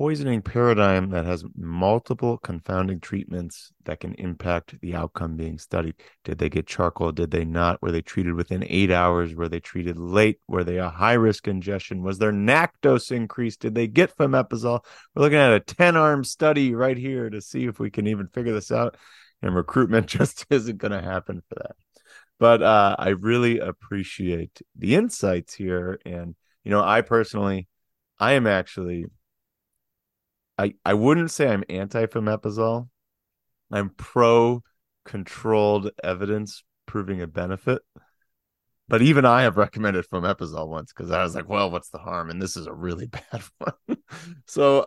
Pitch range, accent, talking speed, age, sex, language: 90-115 Hz, American, 165 wpm, 30-49, male, English